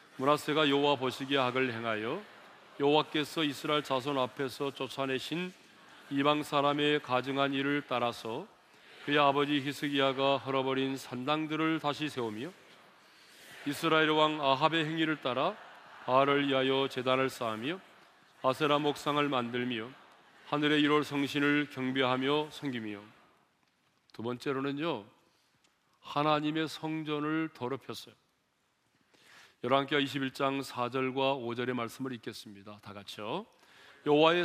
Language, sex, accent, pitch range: Korean, male, native, 130-150 Hz